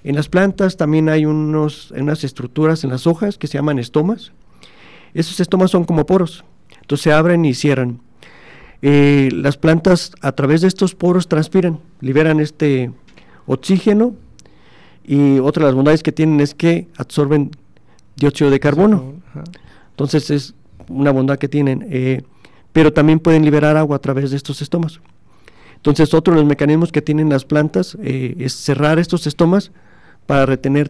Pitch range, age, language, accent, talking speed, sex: 135-160 Hz, 50-69, Spanish, Mexican, 160 wpm, male